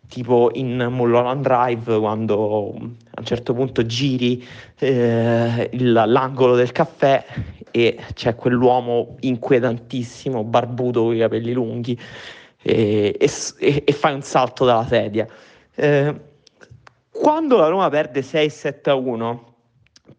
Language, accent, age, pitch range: Italian, native, 30-49, 125-155 Hz